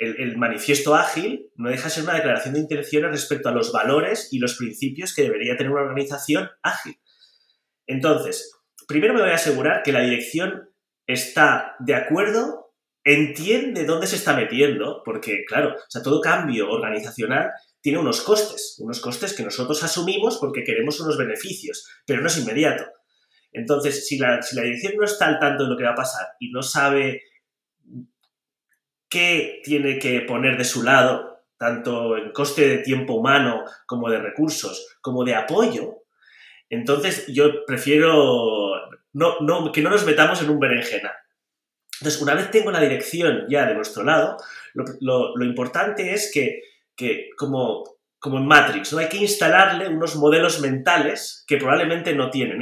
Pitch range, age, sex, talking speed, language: 130-190 Hz, 30-49, male, 170 wpm, Spanish